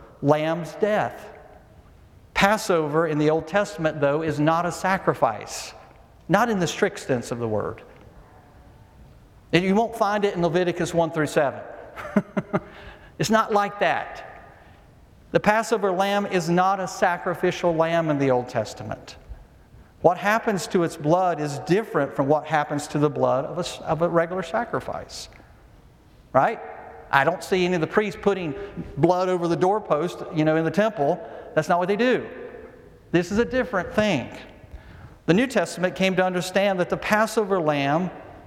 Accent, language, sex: American, English, male